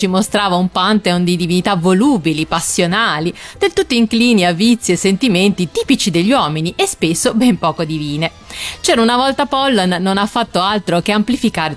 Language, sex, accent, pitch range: Italian, female, native, 170-250 Hz